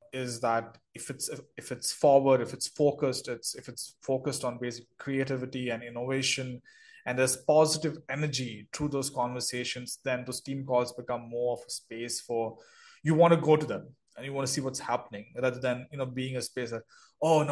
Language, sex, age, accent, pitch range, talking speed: English, male, 20-39, Indian, 125-145 Hz, 195 wpm